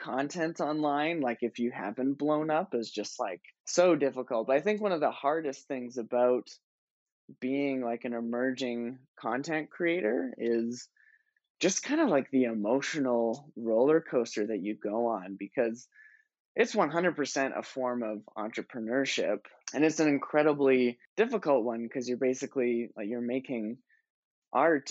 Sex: male